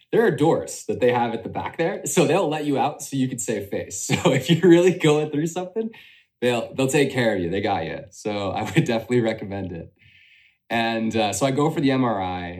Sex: male